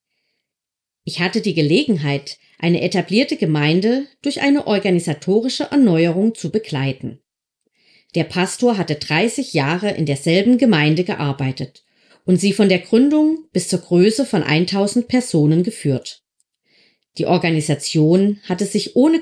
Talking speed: 120 wpm